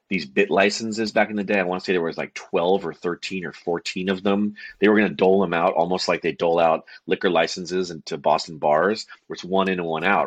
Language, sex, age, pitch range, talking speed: English, male, 30-49, 90-110 Hz, 265 wpm